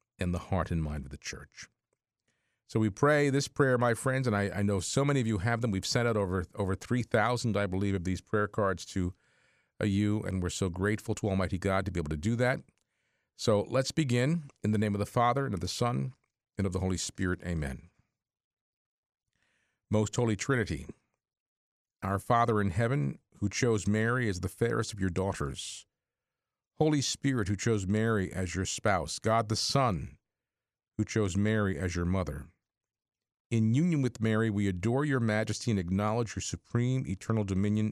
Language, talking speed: English, 190 wpm